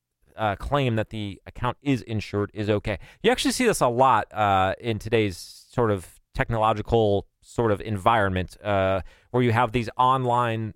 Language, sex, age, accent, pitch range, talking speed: English, male, 30-49, American, 100-125 Hz, 165 wpm